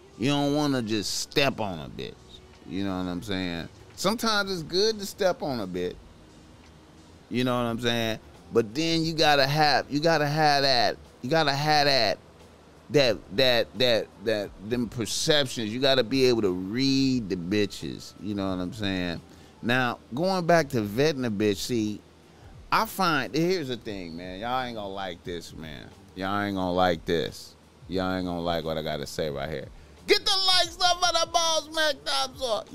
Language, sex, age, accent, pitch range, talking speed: English, male, 30-49, American, 90-150 Hz, 200 wpm